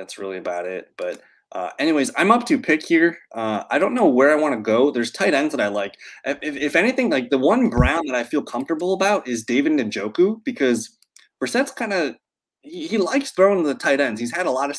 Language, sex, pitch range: English, male, 115-190 Hz